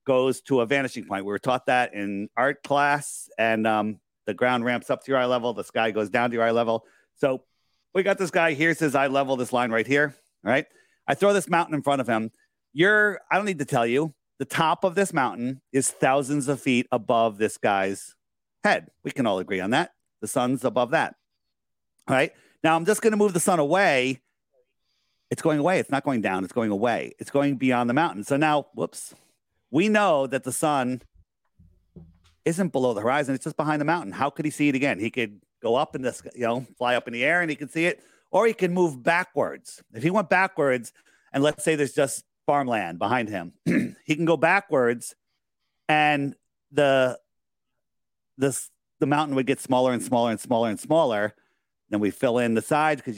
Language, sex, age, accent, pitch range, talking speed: English, male, 40-59, American, 120-155 Hz, 215 wpm